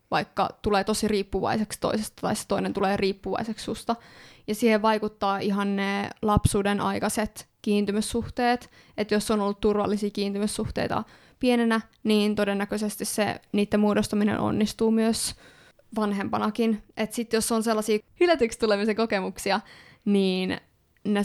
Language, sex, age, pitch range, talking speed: Finnish, female, 20-39, 205-225 Hz, 125 wpm